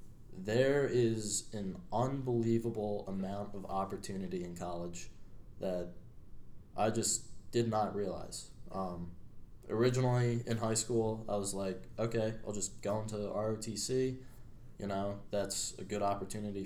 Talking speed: 125 wpm